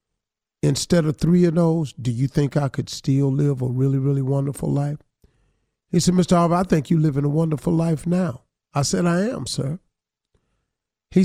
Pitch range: 150-195 Hz